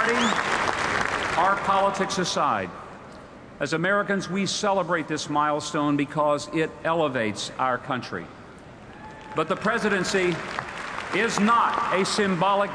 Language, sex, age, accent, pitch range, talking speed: English, male, 50-69, American, 145-195 Hz, 105 wpm